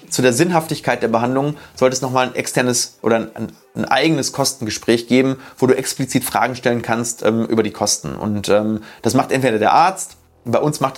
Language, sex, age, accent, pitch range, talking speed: German, male, 30-49, German, 115-145 Hz, 195 wpm